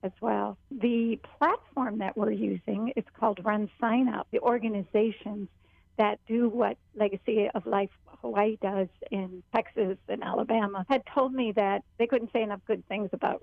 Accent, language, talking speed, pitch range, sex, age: American, English, 165 wpm, 205-235 Hz, female, 50-69